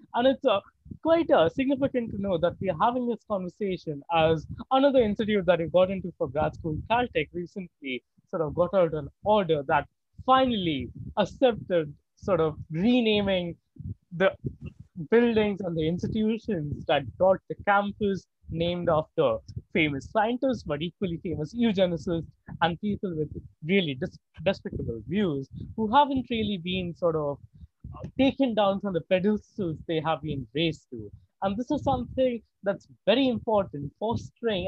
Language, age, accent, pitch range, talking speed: English, 20-39, Indian, 160-215 Hz, 145 wpm